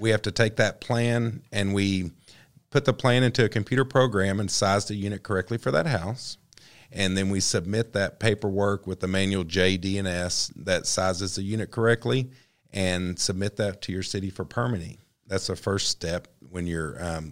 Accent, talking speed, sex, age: American, 185 wpm, male, 40-59